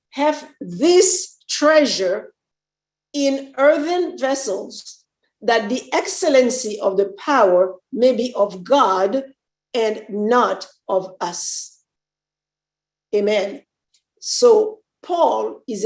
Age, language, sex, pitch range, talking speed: 50-69, English, female, 220-345 Hz, 90 wpm